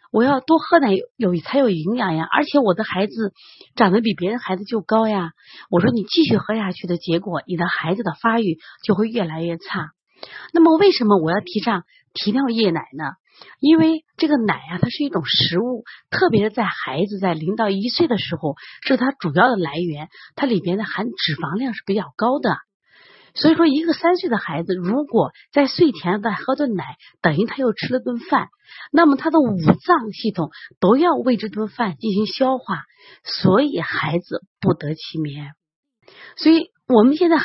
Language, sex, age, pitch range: Chinese, female, 30-49, 180-260 Hz